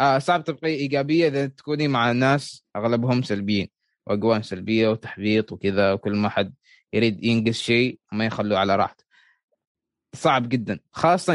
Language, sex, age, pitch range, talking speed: Arabic, male, 20-39, 115-145 Hz, 145 wpm